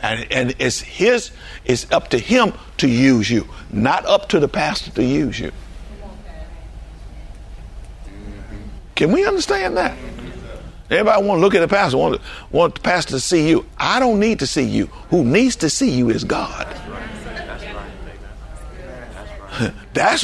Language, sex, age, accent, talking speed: English, male, 60-79, American, 150 wpm